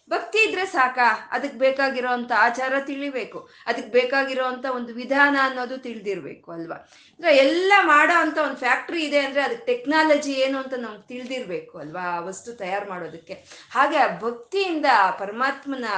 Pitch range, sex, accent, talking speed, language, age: 215-290 Hz, female, native, 130 wpm, Kannada, 20-39